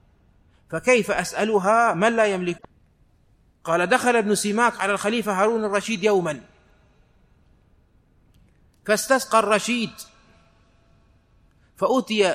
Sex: male